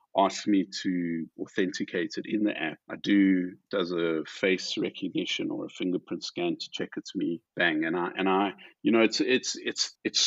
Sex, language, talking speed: male, English, 195 wpm